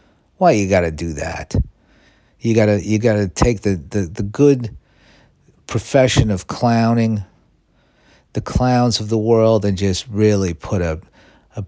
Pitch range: 90-115 Hz